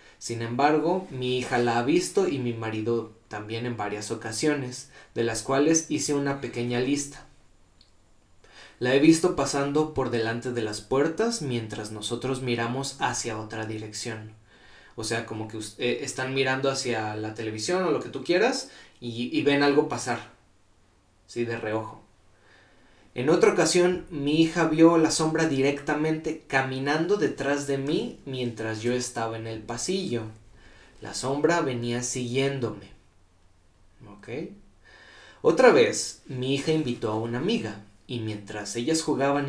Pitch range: 110-140 Hz